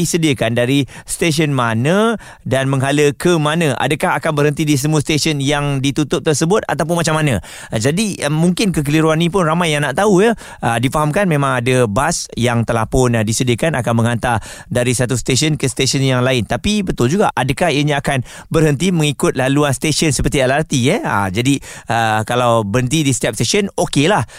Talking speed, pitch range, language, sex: 175 wpm, 115-150 Hz, Malay, male